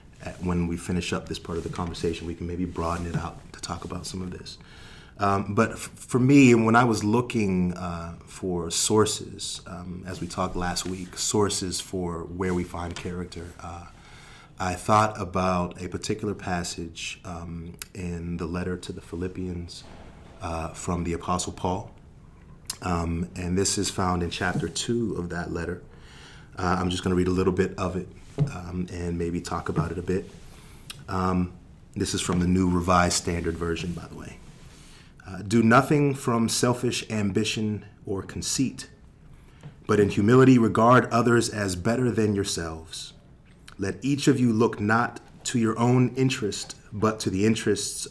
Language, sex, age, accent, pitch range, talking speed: English, male, 30-49, American, 90-110 Hz, 170 wpm